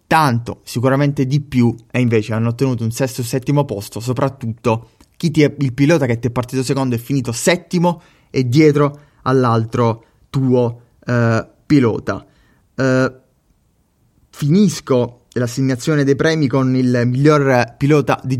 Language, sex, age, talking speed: Italian, male, 20-39, 135 wpm